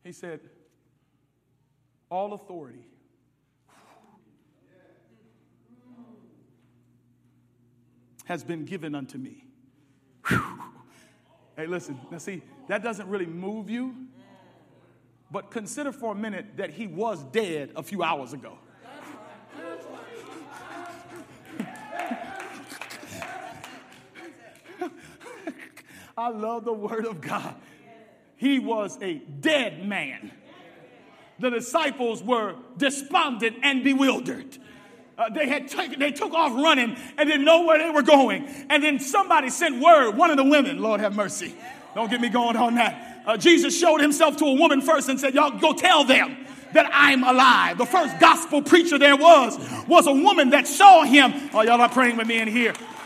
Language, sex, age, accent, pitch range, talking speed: English, male, 50-69, American, 200-300 Hz, 135 wpm